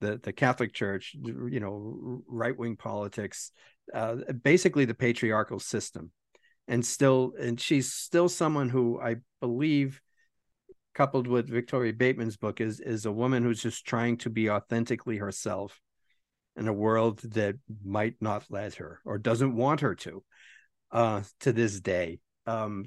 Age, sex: 50-69, male